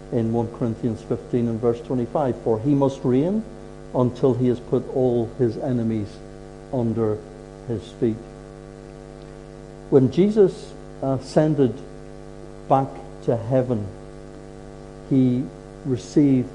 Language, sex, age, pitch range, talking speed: English, male, 60-79, 90-135 Hz, 105 wpm